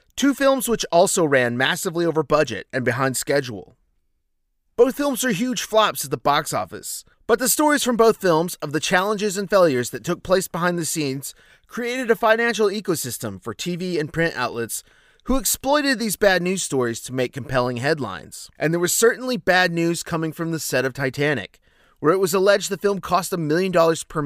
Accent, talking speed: American, 195 wpm